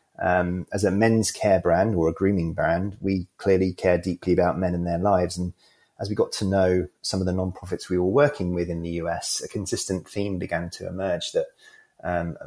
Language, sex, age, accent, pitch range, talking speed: English, male, 30-49, British, 85-100 Hz, 210 wpm